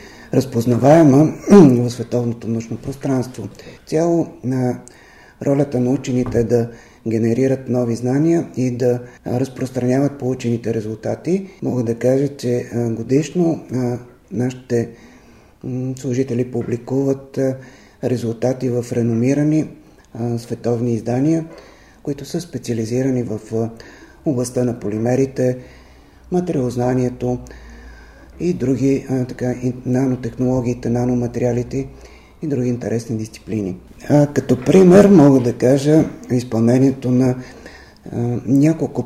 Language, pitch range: Bulgarian, 120-135 Hz